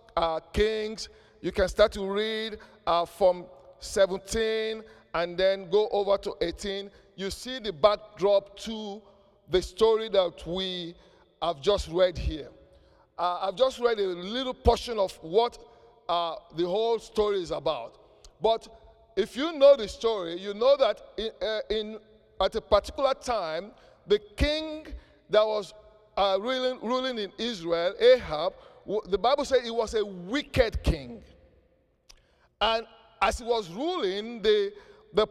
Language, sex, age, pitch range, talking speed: English, male, 50-69, 195-250 Hz, 145 wpm